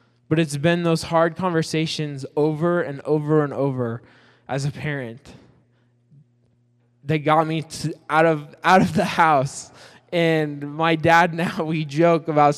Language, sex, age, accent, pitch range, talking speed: English, male, 10-29, American, 140-170 Hz, 145 wpm